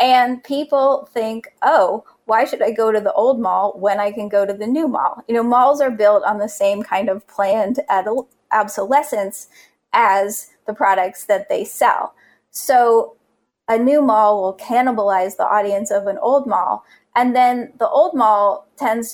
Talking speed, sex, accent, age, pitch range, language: 180 wpm, female, American, 30-49, 205-255 Hz, English